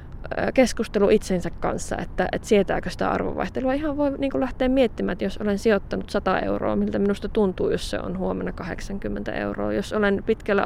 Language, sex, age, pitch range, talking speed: Finnish, female, 20-39, 180-225 Hz, 180 wpm